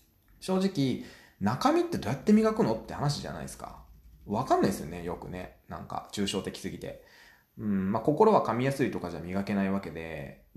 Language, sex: Japanese, male